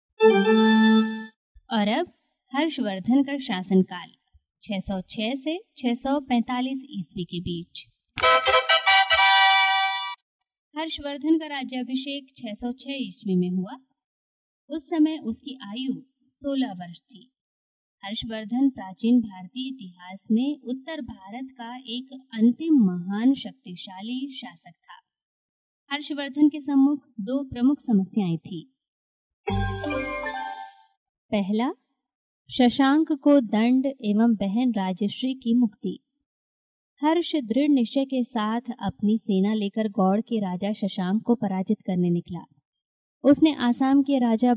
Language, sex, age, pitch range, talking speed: Hindi, female, 20-39, 195-265 Hz, 100 wpm